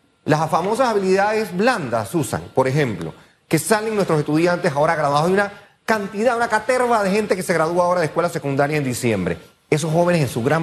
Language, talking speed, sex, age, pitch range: Spanish, 190 wpm, male, 30-49, 130-175 Hz